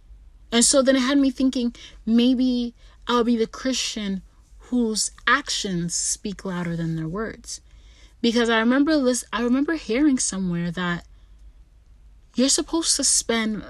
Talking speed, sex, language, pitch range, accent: 140 wpm, female, English, 190-245 Hz, American